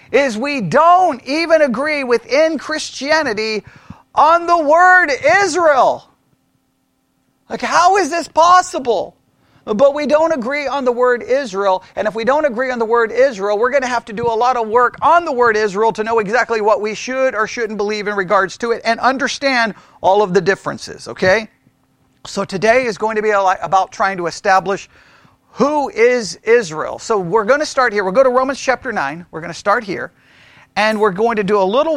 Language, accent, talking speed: English, American, 195 wpm